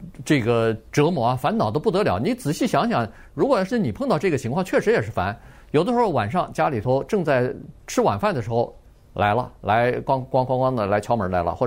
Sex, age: male, 50-69